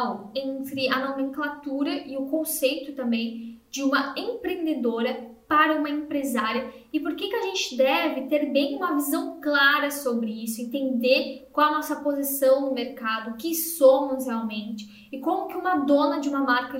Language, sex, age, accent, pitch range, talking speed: Portuguese, female, 10-29, Brazilian, 255-315 Hz, 165 wpm